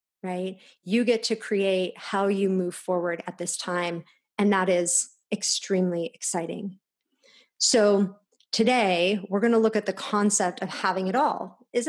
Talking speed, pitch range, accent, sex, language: 155 wpm, 190-235 Hz, American, female, English